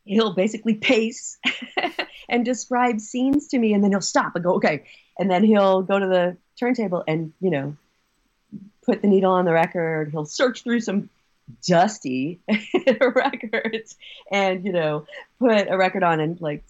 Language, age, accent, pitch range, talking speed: English, 40-59, American, 155-205 Hz, 165 wpm